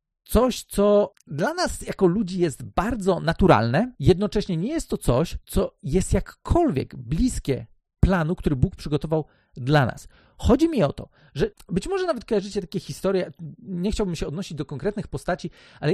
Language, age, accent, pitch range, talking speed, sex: Polish, 40-59, native, 150-215 Hz, 160 wpm, male